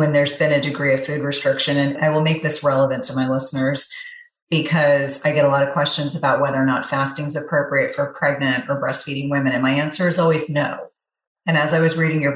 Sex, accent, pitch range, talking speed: female, American, 135-155 Hz, 235 wpm